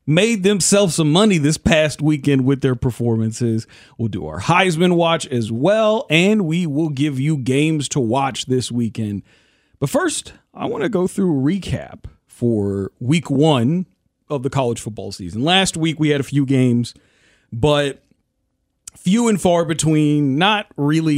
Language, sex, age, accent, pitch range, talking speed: English, male, 40-59, American, 135-185 Hz, 165 wpm